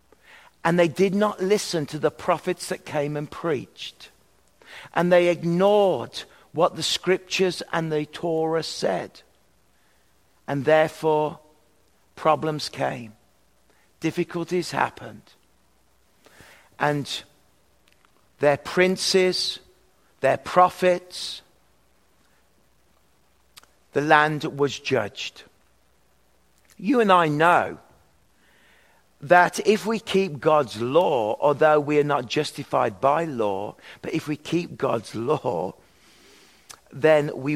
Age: 50-69